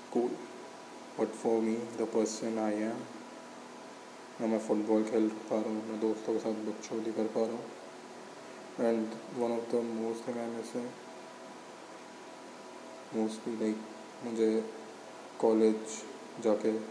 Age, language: 20-39, Hindi